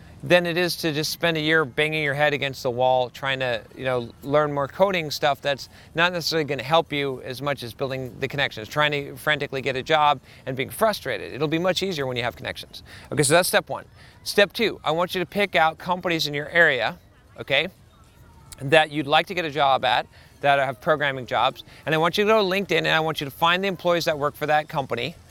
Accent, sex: American, male